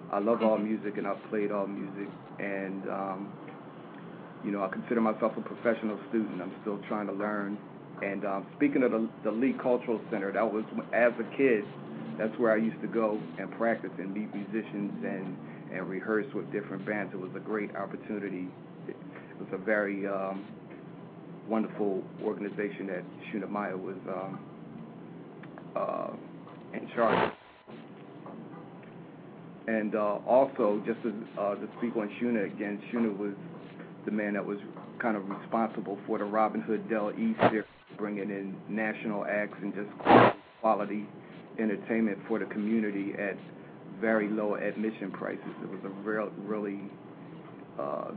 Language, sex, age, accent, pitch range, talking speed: English, male, 40-59, American, 100-110 Hz, 155 wpm